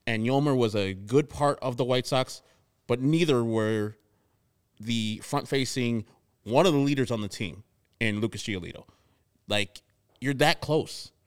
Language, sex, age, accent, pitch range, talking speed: English, male, 30-49, American, 115-160 Hz, 155 wpm